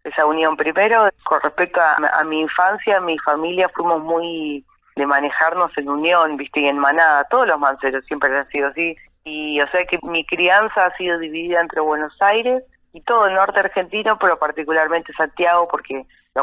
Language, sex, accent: Spanish, female, Argentinian